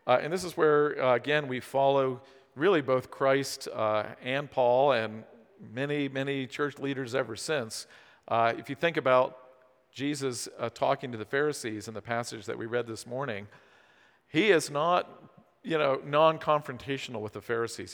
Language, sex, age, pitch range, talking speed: English, male, 50-69, 115-145 Hz, 165 wpm